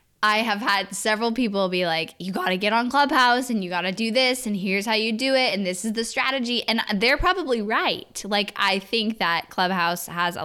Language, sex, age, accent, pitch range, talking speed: English, female, 10-29, American, 170-220 Hz, 235 wpm